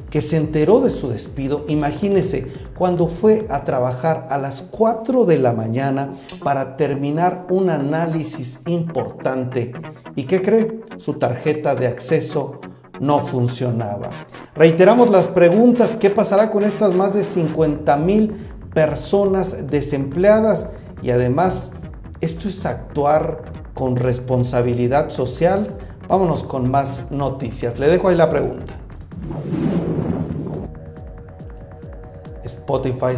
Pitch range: 125-165 Hz